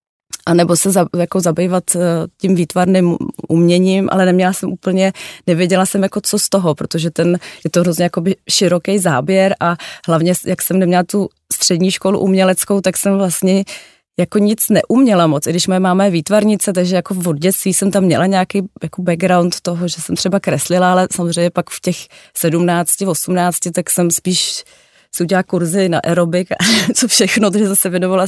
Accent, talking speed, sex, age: native, 170 wpm, female, 30-49